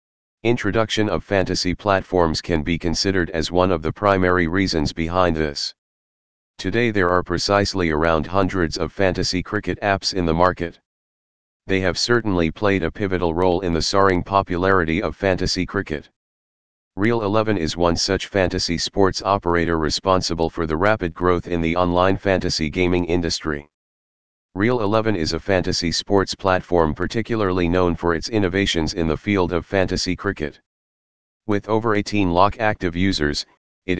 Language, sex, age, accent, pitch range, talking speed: English, male, 40-59, American, 85-100 Hz, 150 wpm